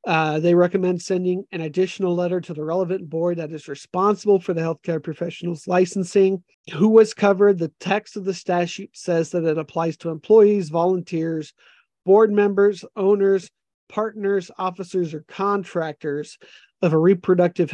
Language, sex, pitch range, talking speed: English, male, 165-195 Hz, 150 wpm